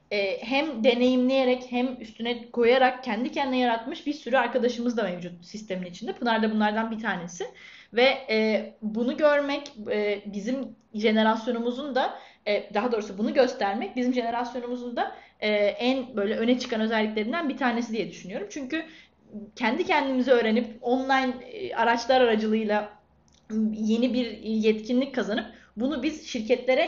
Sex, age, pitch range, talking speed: female, 10-29, 220-260 Hz, 125 wpm